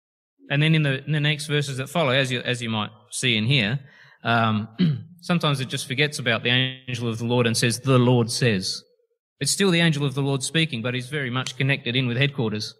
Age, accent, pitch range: 30-49, Australian, 115-155 Hz